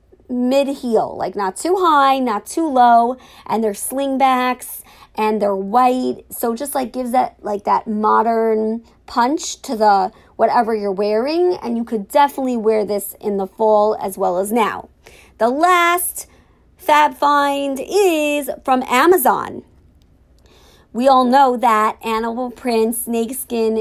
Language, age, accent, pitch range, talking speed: English, 40-59, American, 220-280 Hz, 140 wpm